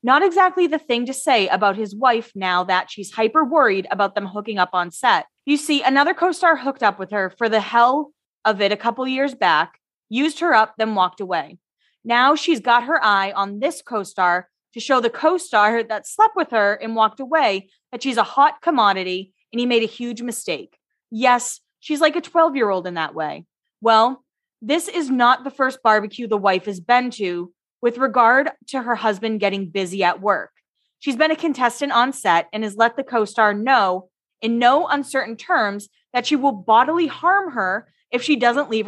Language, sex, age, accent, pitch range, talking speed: English, female, 20-39, American, 210-275 Hz, 195 wpm